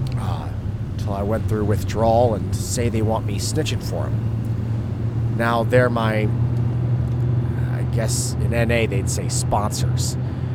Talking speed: 125 wpm